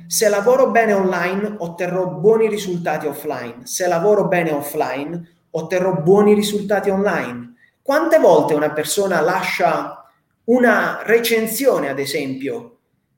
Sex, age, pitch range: male, 30-49, 165-210 Hz